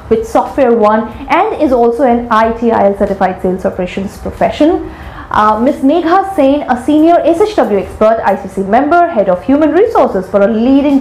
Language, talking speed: English, 155 wpm